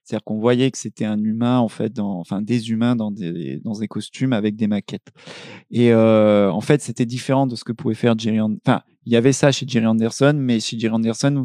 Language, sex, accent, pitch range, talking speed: French, male, French, 110-130 Hz, 220 wpm